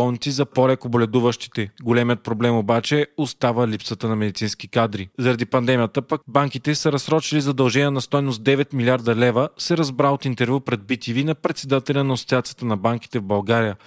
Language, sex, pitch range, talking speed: Bulgarian, male, 120-145 Hz, 155 wpm